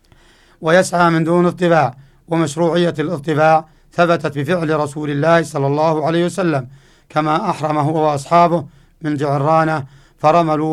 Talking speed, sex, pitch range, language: 115 wpm, male, 150-170 Hz, Arabic